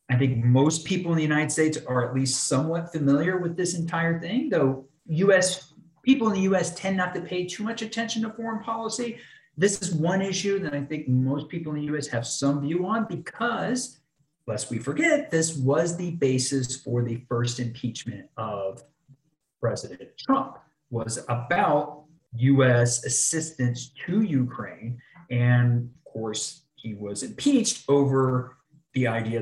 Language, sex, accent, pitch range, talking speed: English, male, American, 120-165 Hz, 160 wpm